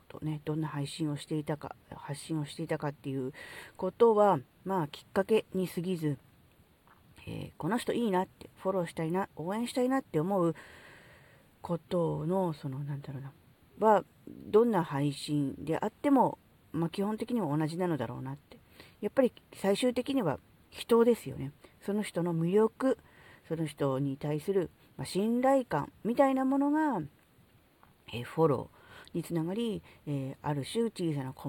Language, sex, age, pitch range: Japanese, female, 40-59, 145-220 Hz